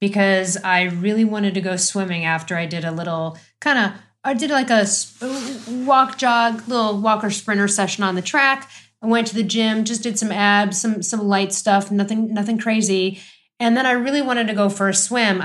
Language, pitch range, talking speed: English, 195-260 Hz, 205 wpm